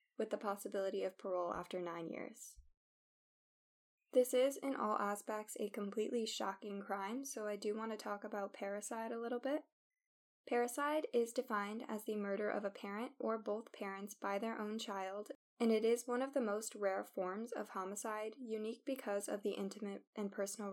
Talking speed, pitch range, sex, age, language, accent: 180 wpm, 195-225 Hz, female, 10-29, English, American